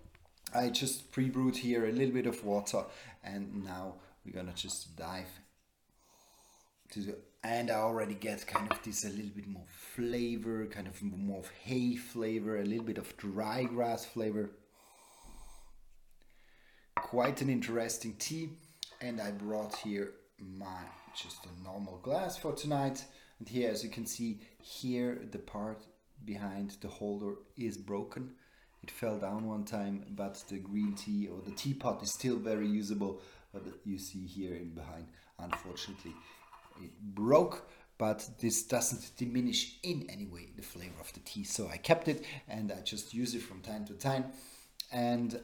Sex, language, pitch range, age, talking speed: male, English, 100-120 Hz, 30-49, 160 wpm